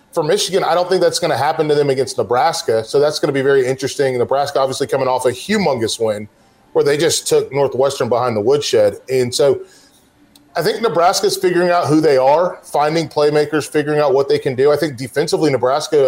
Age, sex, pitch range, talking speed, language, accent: 30-49, male, 140-180 Hz, 215 wpm, English, American